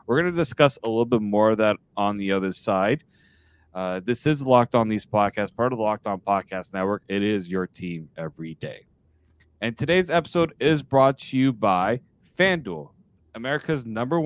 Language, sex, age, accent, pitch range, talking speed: English, male, 30-49, American, 105-140 Hz, 185 wpm